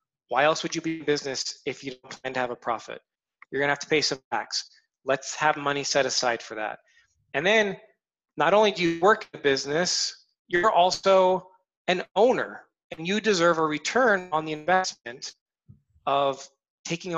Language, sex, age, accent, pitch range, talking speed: English, male, 20-39, American, 130-180 Hz, 190 wpm